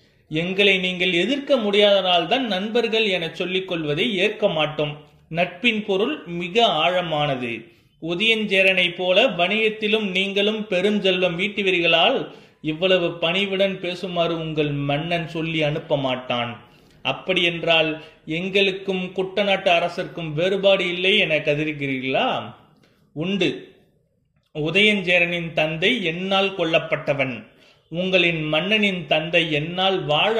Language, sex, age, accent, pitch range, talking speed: Tamil, male, 30-49, native, 155-195 Hz, 95 wpm